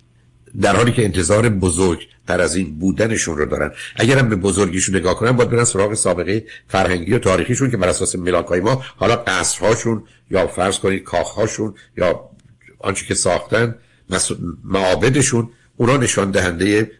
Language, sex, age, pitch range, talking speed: Persian, male, 60-79, 95-130 Hz, 150 wpm